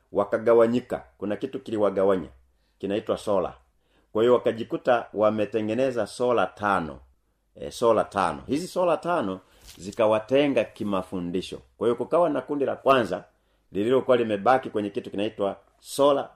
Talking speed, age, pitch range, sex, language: 115 wpm, 40-59, 100-140 Hz, male, Swahili